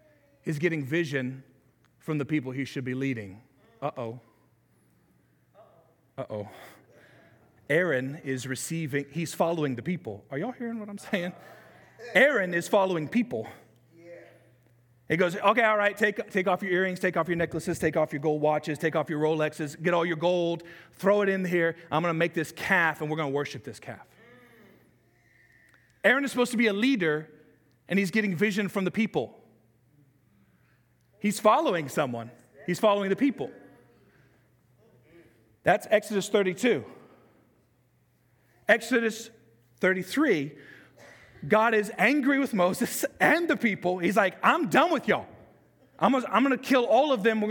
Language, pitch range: English, 140-210 Hz